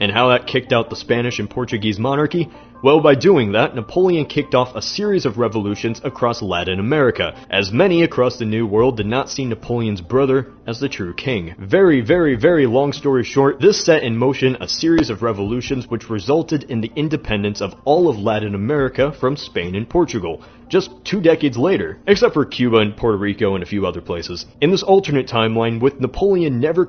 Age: 30-49